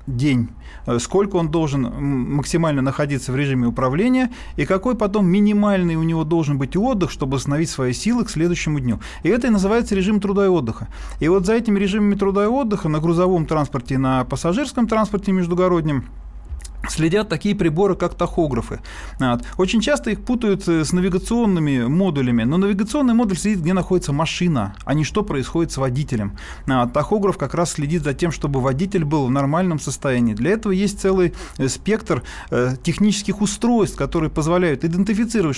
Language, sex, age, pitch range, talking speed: Russian, male, 30-49, 135-195 Hz, 160 wpm